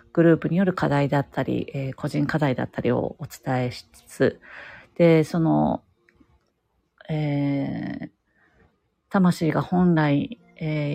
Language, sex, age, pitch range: Japanese, female, 40-59, 140-175 Hz